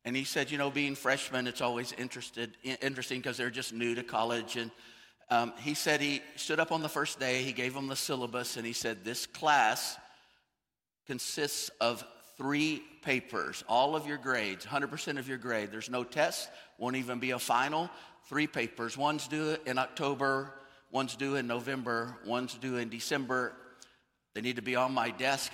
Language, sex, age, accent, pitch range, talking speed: English, male, 50-69, American, 120-140 Hz, 185 wpm